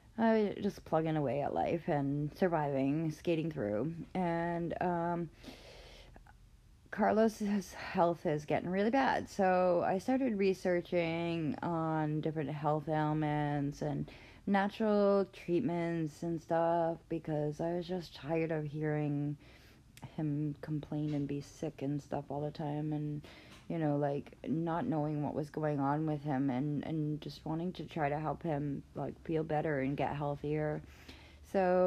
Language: English